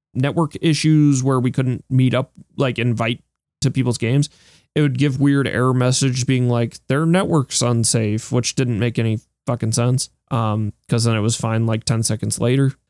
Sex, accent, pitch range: male, American, 115-135 Hz